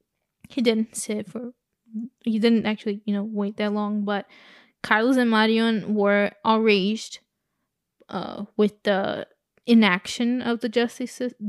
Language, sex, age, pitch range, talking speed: English, female, 10-29, 210-245 Hz, 130 wpm